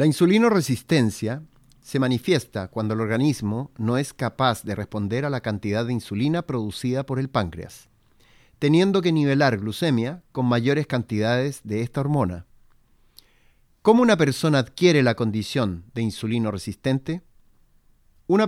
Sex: male